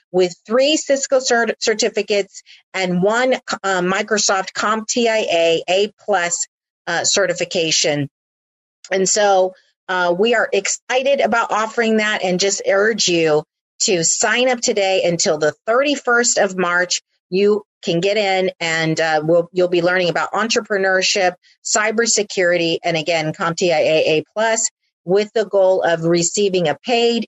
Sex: female